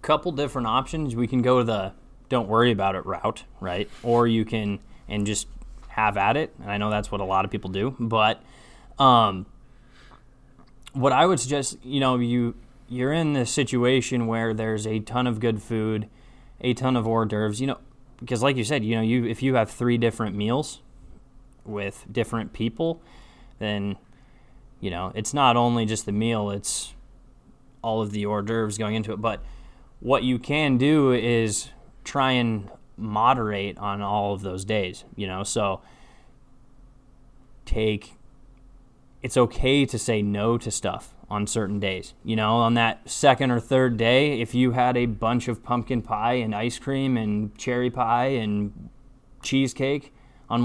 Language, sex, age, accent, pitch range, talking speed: English, male, 20-39, American, 105-130 Hz, 175 wpm